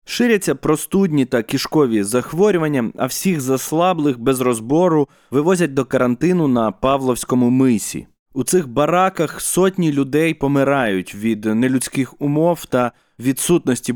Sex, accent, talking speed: male, native, 115 wpm